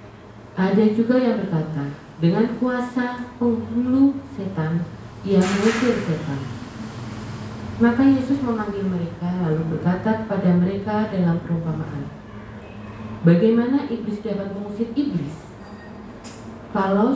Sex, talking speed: female, 95 wpm